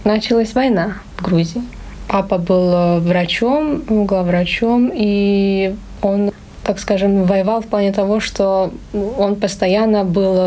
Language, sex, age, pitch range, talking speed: Russian, female, 20-39, 180-215 Hz, 115 wpm